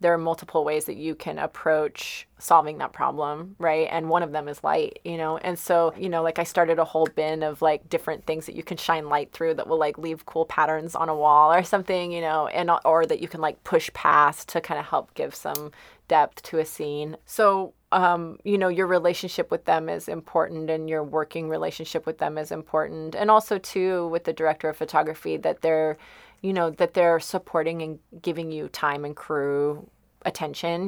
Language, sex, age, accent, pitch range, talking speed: English, female, 30-49, American, 155-175 Hz, 215 wpm